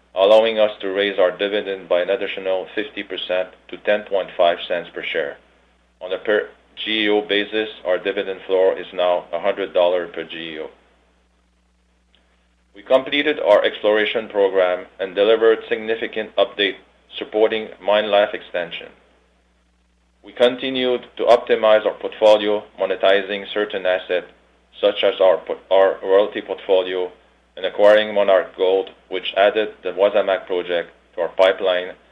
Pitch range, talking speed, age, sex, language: 90-110 Hz, 125 wpm, 40-59, male, English